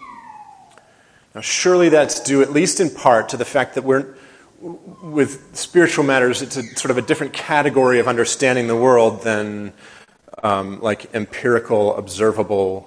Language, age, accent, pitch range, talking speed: English, 30-49, American, 120-160 Hz, 150 wpm